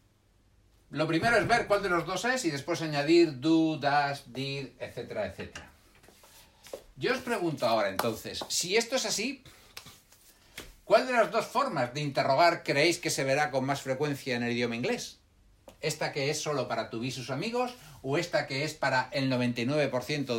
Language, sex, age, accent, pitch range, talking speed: Spanish, male, 60-79, Spanish, 115-170 Hz, 175 wpm